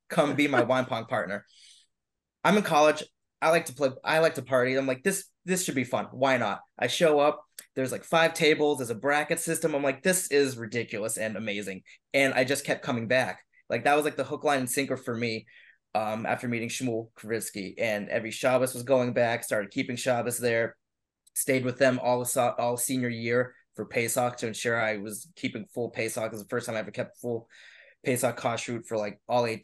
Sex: male